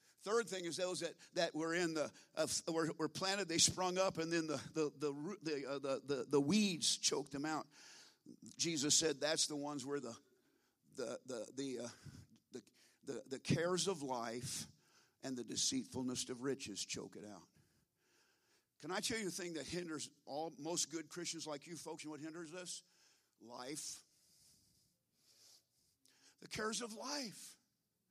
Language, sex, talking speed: English, male, 170 wpm